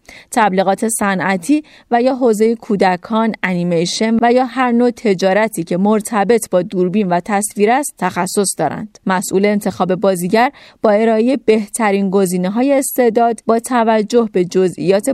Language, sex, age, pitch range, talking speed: Persian, female, 30-49, 185-230 Hz, 135 wpm